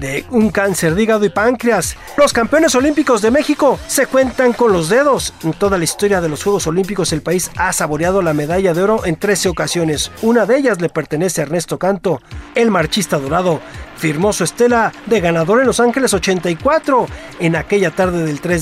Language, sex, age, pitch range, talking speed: Spanish, male, 40-59, 180-245 Hz, 195 wpm